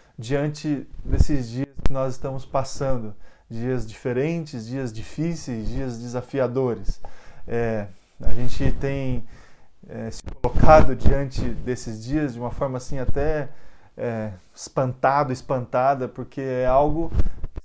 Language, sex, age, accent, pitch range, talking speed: Portuguese, male, 20-39, Brazilian, 120-150 Hz, 120 wpm